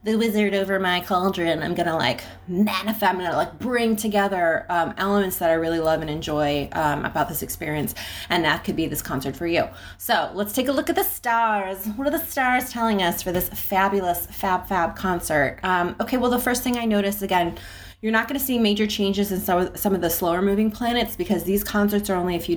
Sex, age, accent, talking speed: female, 20-39, American, 215 wpm